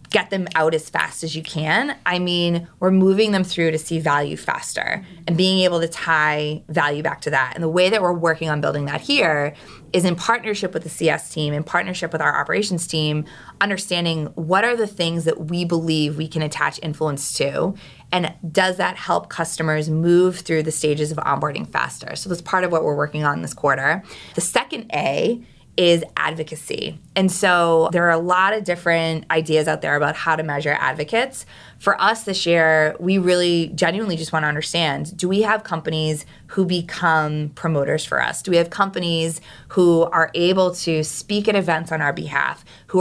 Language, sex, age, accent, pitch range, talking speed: English, female, 20-39, American, 155-180 Hz, 195 wpm